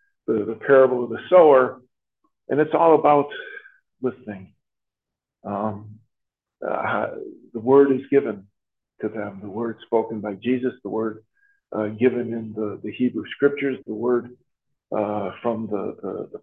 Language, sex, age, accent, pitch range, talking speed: English, male, 50-69, American, 110-140 Hz, 140 wpm